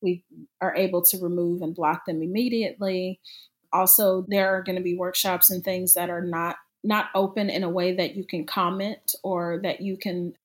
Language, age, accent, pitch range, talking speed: English, 30-49, American, 180-200 Hz, 195 wpm